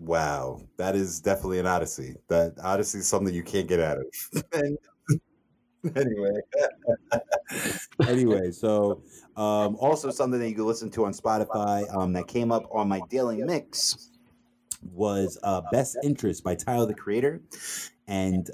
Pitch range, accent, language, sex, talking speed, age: 90-115 Hz, American, English, male, 145 wpm, 30-49